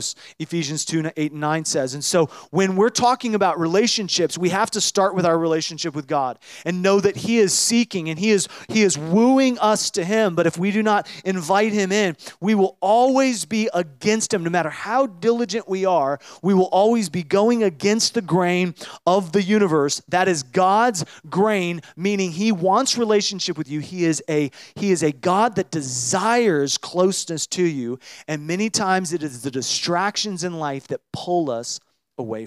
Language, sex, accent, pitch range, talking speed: English, male, American, 155-210 Hz, 195 wpm